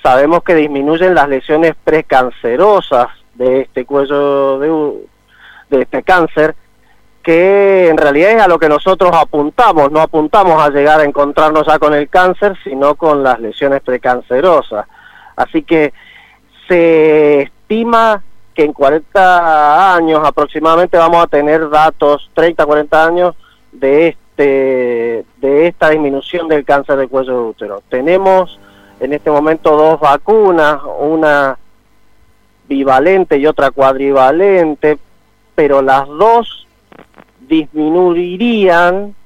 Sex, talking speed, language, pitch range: male, 120 wpm, Spanish, 135-175 Hz